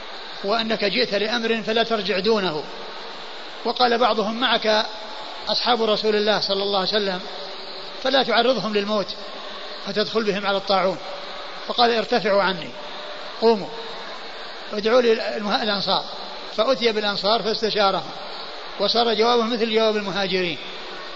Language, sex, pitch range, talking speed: Arabic, male, 200-235 Hz, 110 wpm